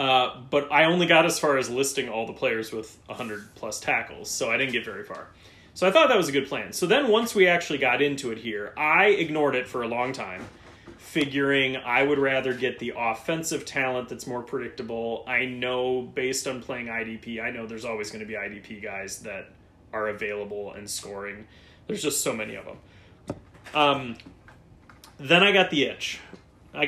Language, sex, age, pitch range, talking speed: English, male, 30-49, 110-135 Hz, 200 wpm